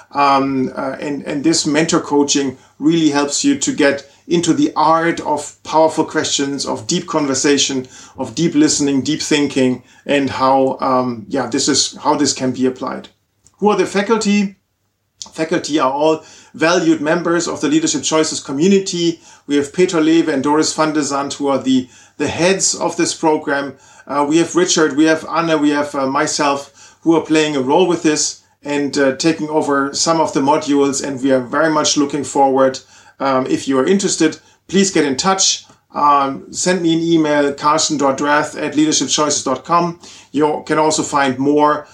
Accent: German